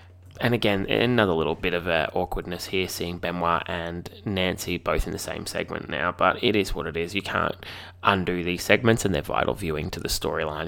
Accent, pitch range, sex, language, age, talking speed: Australian, 85-95 Hz, male, English, 20-39, 210 wpm